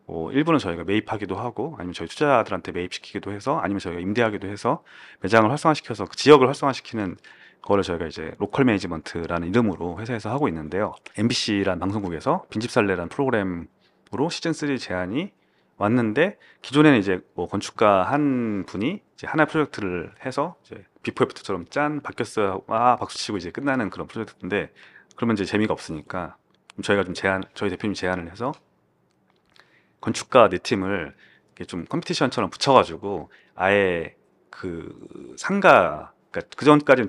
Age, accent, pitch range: 30-49, native, 90-120 Hz